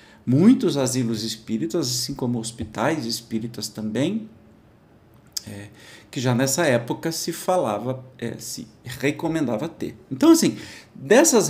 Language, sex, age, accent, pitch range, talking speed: Portuguese, male, 50-69, Brazilian, 110-155 Hz, 105 wpm